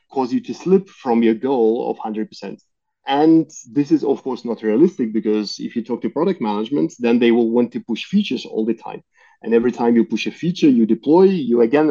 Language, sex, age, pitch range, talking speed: English, male, 30-49, 120-170 Hz, 220 wpm